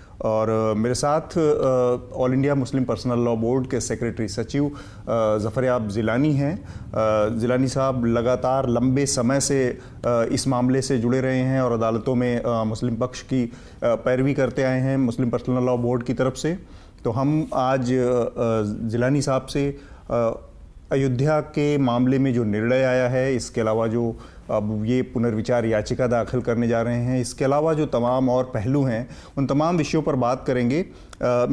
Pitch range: 120-145 Hz